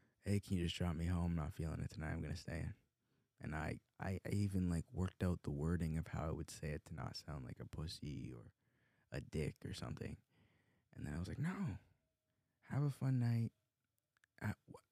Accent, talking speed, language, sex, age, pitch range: American, 220 wpm, English, male, 20-39, 85-120 Hz